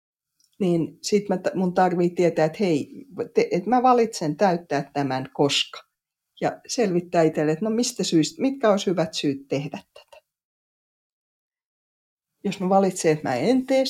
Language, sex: Finnish, female